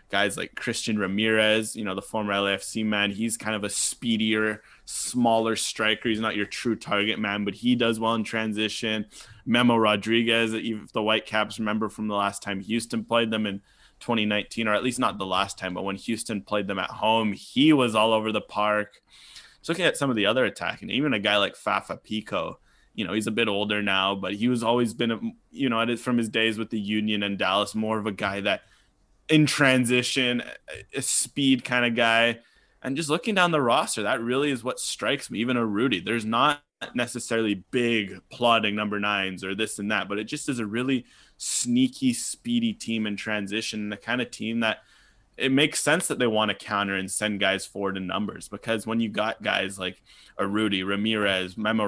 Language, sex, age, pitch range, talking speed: English, male, 20-39, 105-120 Hz, 210 wpm